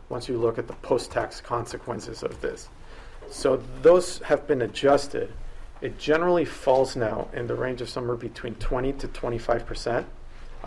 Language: English